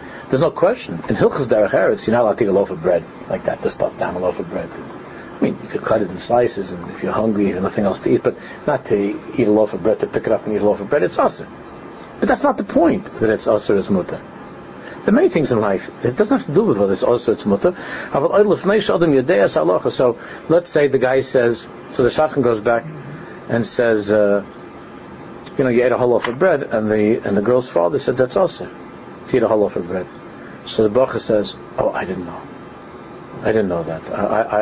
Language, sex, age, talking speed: English, male, 50-69, 230 wpm